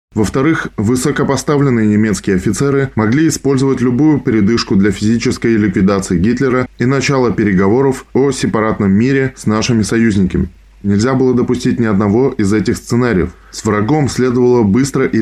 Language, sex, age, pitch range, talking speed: Russian, male, 20-39, 110-135 Hz, 135 wpm